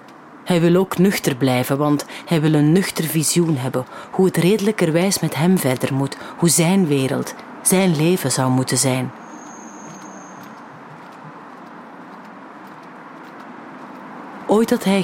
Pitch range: 150-195 Hz